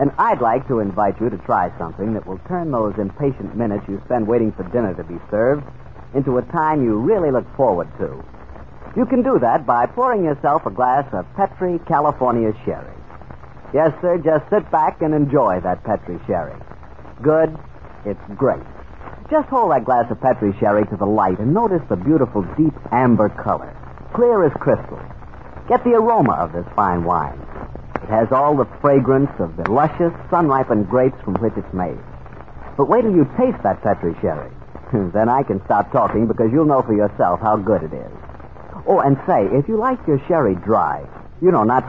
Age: 50-69